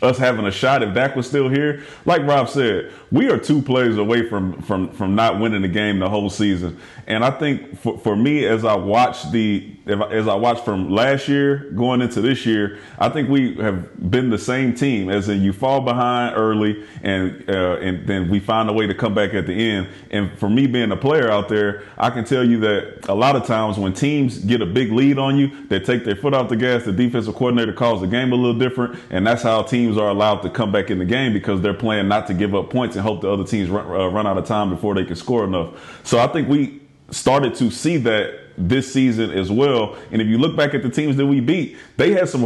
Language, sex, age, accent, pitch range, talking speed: English, male, 30-49, American, 100-125 Hz, 250 wpm